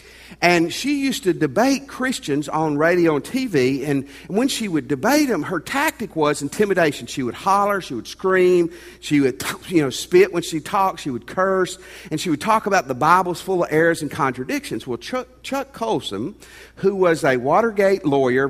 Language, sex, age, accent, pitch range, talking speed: English, male, 50-69, American, 135-200 Hz, 190 wpm